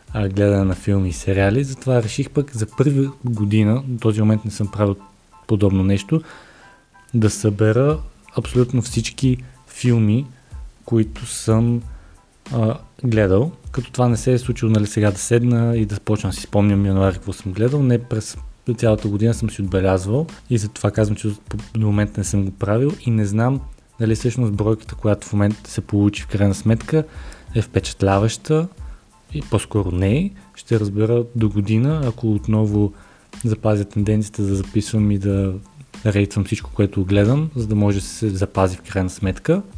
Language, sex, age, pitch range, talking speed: Bulgarian, male, 20-39, 100-120 Hz, 165 wpm